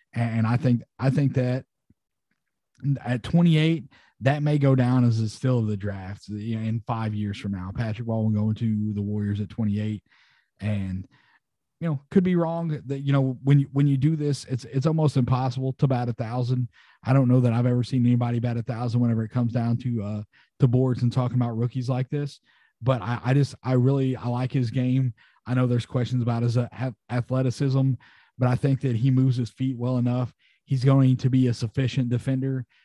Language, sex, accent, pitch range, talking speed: English, male, American, 115-130 Hz, 210 wpm